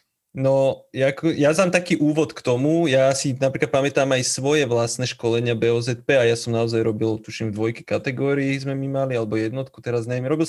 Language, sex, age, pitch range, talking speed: Slovak, male, 20-39, 120-145 Hz, 190 wpm